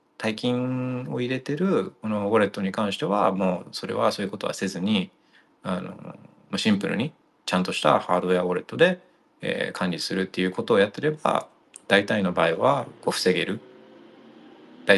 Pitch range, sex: 95-140 Hz, male